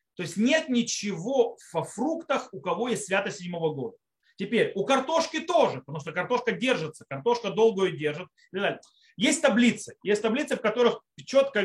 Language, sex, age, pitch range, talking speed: Russian, male, 30-49, 170-245 Hz, 160 wpm